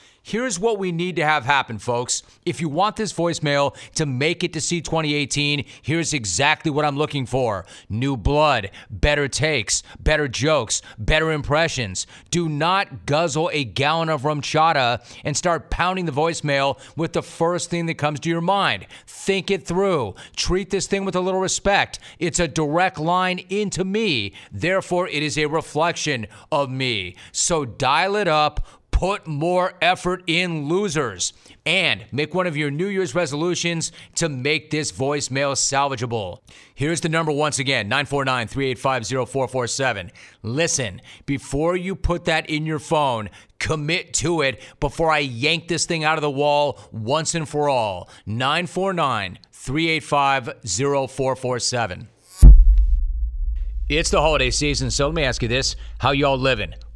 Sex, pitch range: male, 130-170 Hz